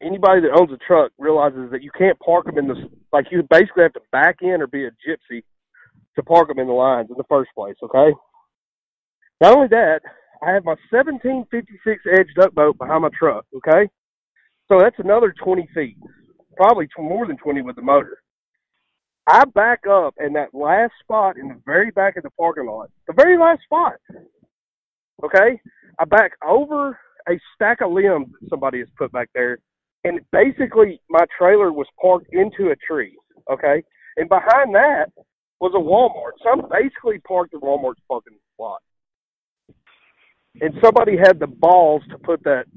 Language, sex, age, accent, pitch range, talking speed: English, male, 40-59, American, 150-220 Hz, 175 wpm